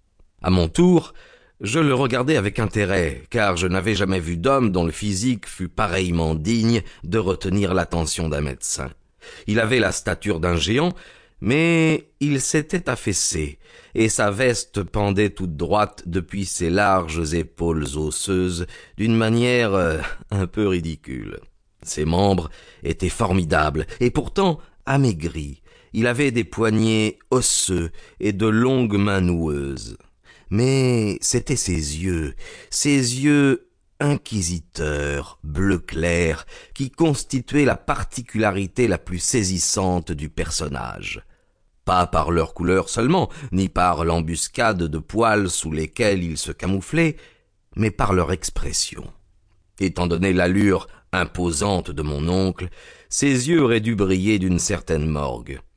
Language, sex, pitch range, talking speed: French, male, 85-115 Hz, 130 wpm